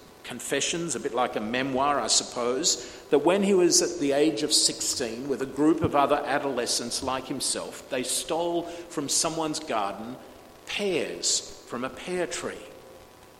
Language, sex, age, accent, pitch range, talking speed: English, male, 50-69, Australian, 150-220 Hz, 155 wpm